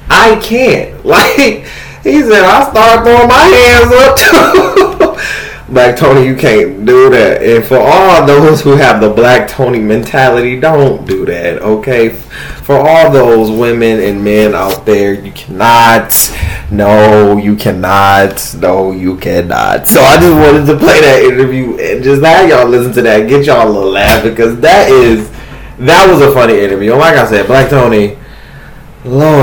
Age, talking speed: 20-39, 165 wpm